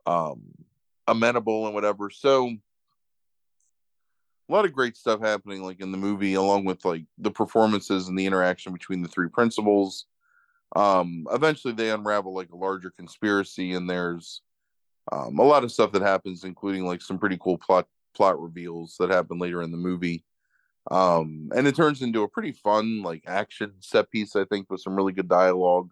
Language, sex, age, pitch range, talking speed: English, male, 20-39, 90-115 Hz, 180 wpm